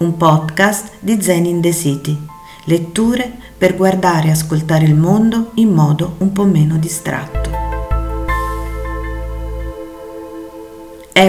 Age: 40-59